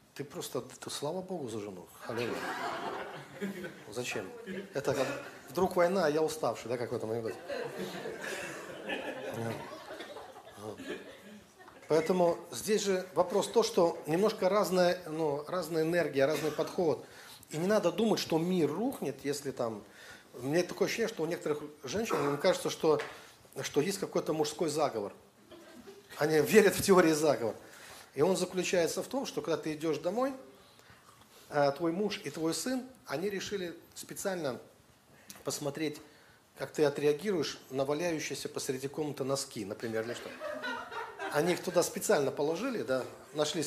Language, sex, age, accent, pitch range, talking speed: Russian, male, 40-59, native, 145-190 Hz, 130 wpm